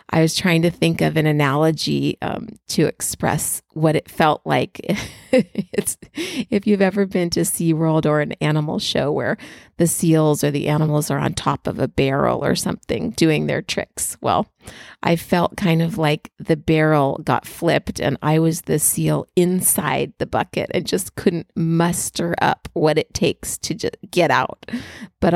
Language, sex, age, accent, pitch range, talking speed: English, female, 30-49, American, 165-215 Hz, 170 wpm